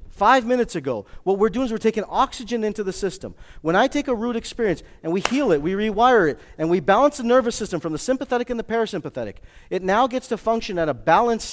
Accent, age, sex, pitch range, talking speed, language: American, 40-59, male, 115-180 Hz, 240 wpm, English